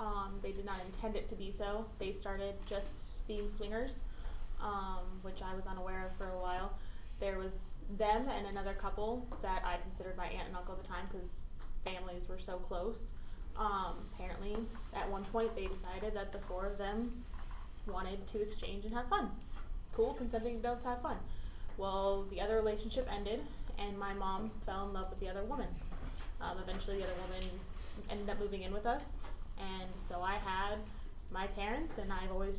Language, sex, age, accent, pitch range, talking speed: English, female, 20-39, American, 185-210 Hz, 190 wpm